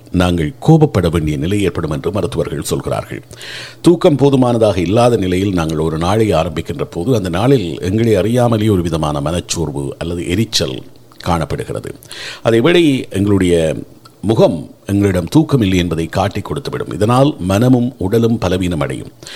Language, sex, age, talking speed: Tamil, male, 50-69, 125 wpm